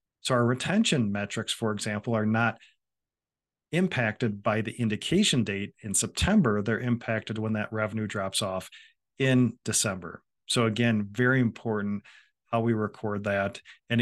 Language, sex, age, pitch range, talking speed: English, male, 40-59, 105-125 Hz, 140 wpm